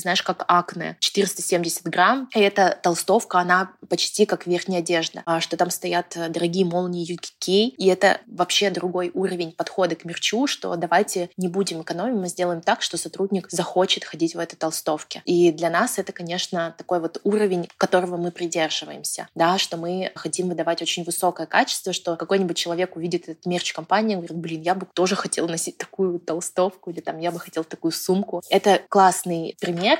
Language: Russian